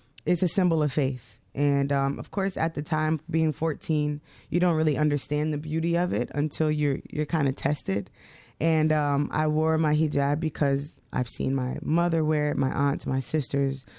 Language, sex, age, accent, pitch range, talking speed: English, female, 20-39, American, 140-155 Hz, 195 wpm